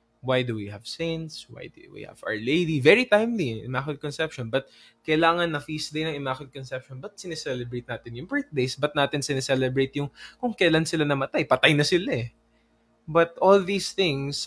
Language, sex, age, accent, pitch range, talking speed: English, male, 20-39, Filipino, 125-170 Hz, 185 wpm